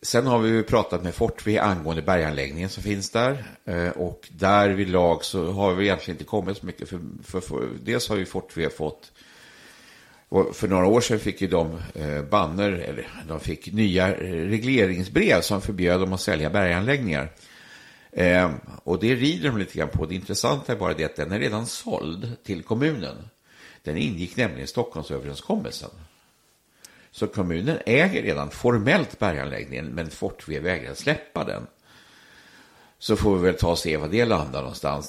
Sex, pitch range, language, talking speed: male, 80-105 Hz, Swedish, 165 wpm